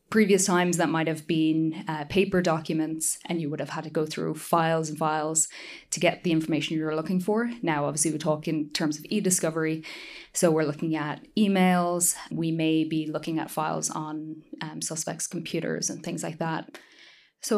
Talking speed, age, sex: 190 wpm, 20-39, female